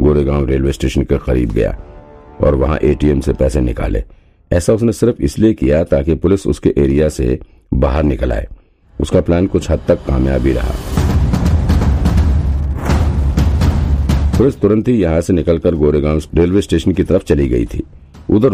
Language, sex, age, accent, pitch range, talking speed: Hindi, male, 50-69, native, 70-85 Hz, 145 wpm